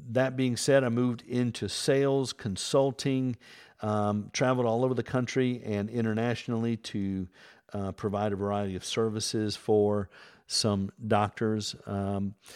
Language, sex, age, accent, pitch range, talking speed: English, male, 50-69, American, 105-130 Hz, 130 wpm